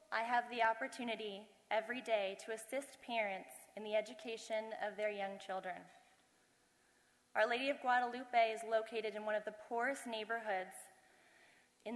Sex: female